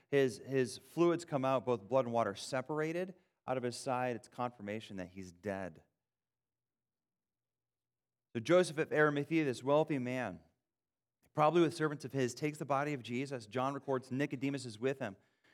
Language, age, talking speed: English, 30-49, 160 wpm